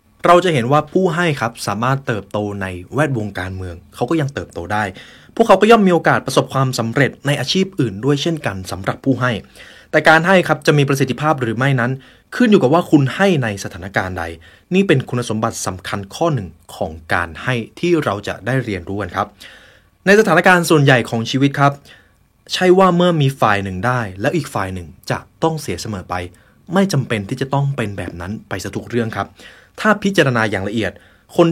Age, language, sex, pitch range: 20-39, Thai, male, 100-150 Hz